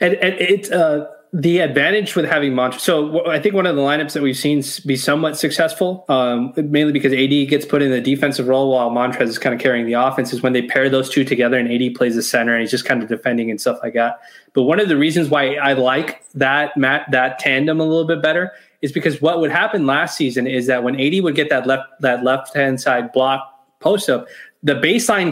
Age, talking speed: 20-39, 240 wpm